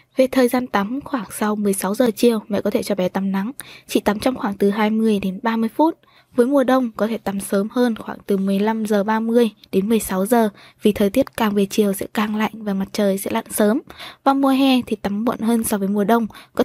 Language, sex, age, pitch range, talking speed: Vietnamese, female, 20-39, 205-245 Hz, 245 wpm